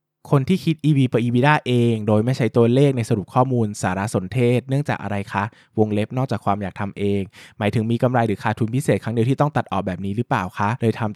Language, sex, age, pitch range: Thai, male, 20-39, 100-130 Hz